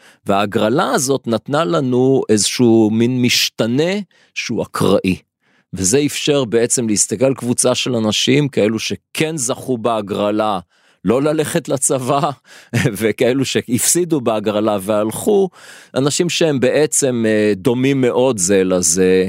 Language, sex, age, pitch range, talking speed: Hebrew, male, 40-59, 105-135 Hz, 110 wpm